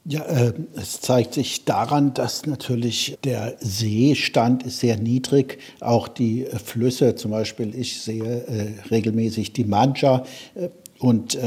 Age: 60-79